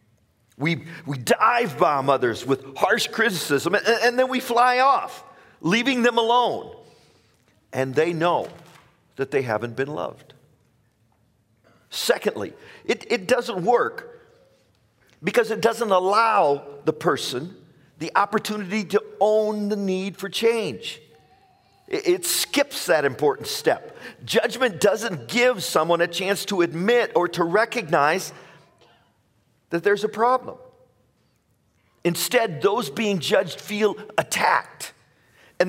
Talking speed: 120 wpm